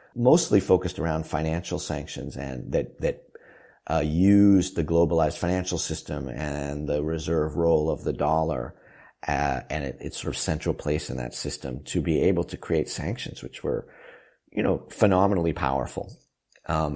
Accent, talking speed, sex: American, 160 wpm, male